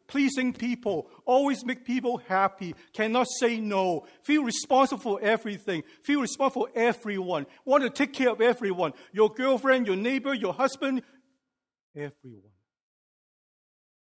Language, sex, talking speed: English, male, 130 wpm